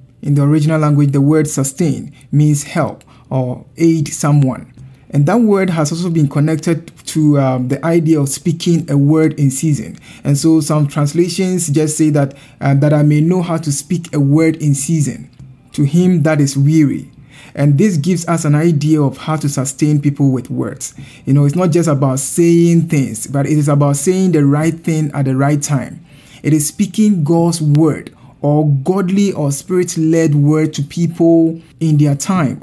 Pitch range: 140-165 Hz